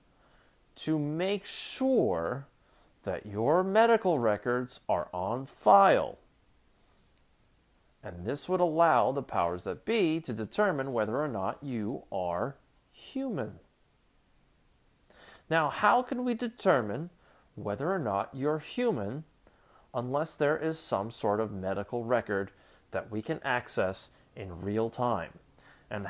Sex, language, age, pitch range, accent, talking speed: male, English, 30-49, 115-180 Hz, American, 120 wpm